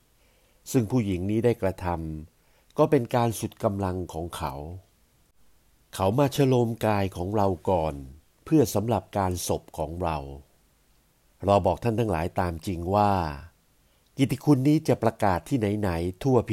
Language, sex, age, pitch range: Thai, male, 60-79, 85-115 Hz